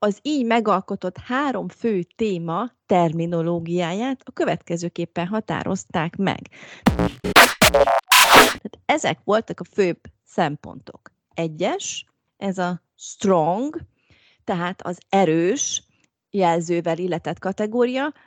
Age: 30-49